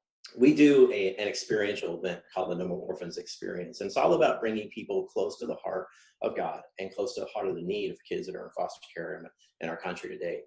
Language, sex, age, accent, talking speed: English, male, 30-49, American, 250 wpm